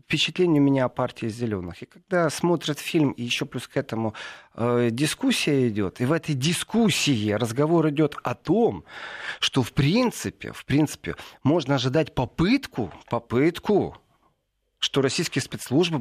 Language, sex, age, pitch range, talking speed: Russian, male, 40-59, 115-160 Hz, 140 wpm